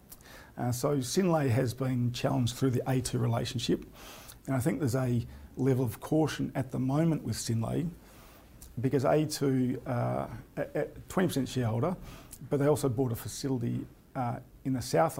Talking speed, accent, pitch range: 155 wpm, Australian, 115-135 Hz